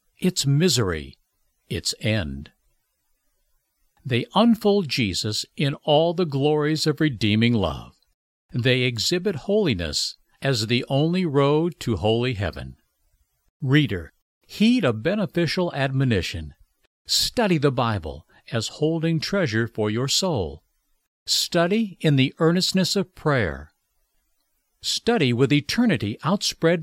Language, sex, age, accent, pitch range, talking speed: English, male, 60-79, American, 110-170 Hz, 105 wpm